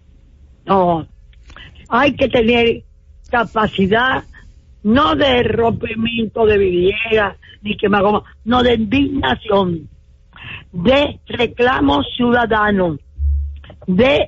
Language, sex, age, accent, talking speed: English, female, 50-69, American, 80 wpm